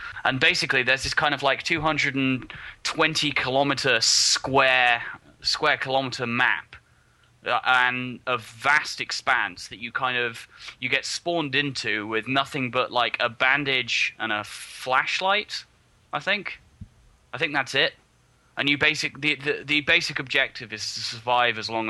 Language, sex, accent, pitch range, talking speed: English, male, British, 115-145 Hz, 155 wpm